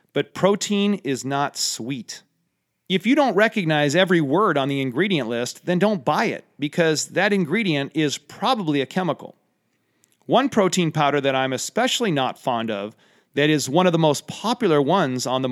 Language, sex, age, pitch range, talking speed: English, male, 40-59, 135-190 Hz, 175 wpm